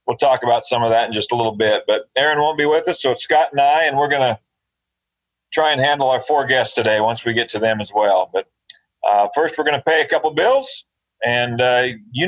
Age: 40-59